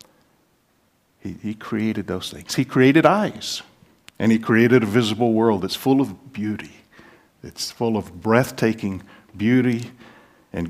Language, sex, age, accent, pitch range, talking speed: English, male, 50-69, American, 105-130 Hz, 135 wpm